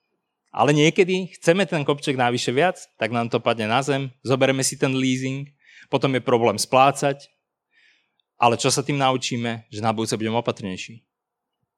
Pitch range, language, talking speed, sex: 115-140 Hz, Slovak, 160 wpm, male